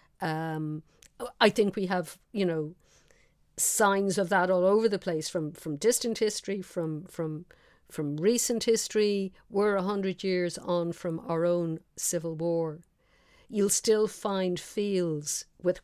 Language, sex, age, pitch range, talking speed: English, female, 50-69, 170-205 Hz, 140 wpm